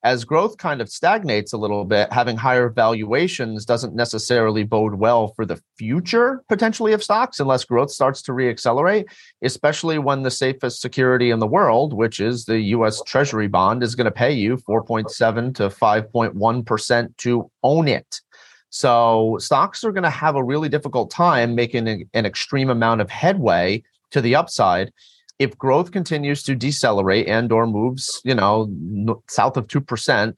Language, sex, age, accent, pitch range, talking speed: English, male, 30-49, American, 100-125 Hz, 165 wpm